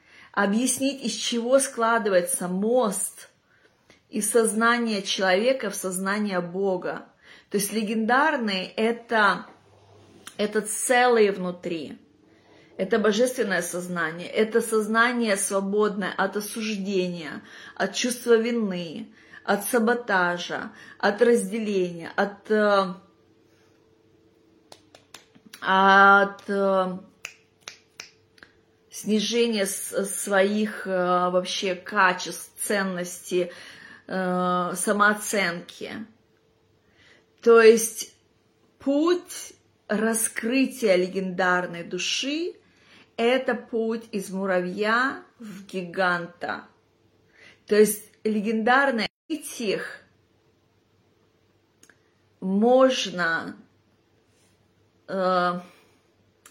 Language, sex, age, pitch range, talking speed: Russian, female, 30-49, 180-225 Hz, 65 wpm